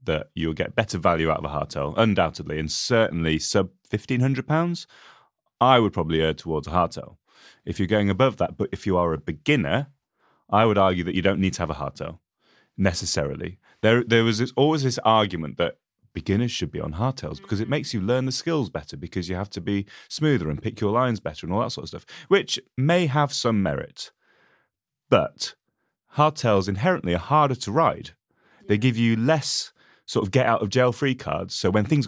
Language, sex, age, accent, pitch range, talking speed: English, male, 30-49, British, 95-140 Hz, 205 wpm